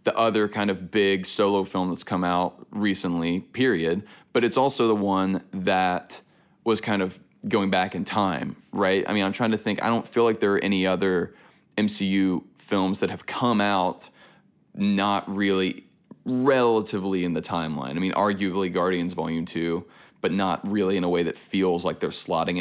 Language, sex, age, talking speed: English, male, 20-39, 185 wpm